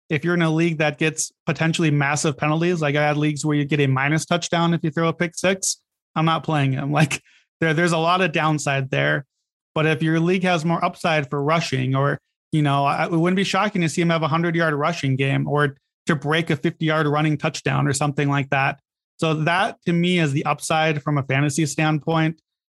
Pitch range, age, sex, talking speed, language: 145-170 Hz, 30-49, male, 225 wpm, English